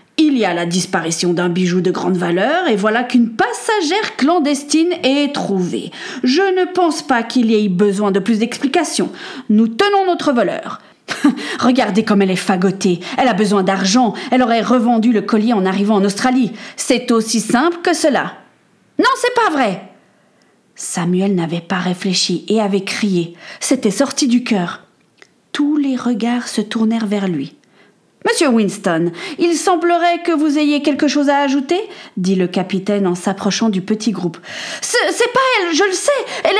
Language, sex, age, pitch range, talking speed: French, female, 40-59, 205-325 Hz, 170 wpm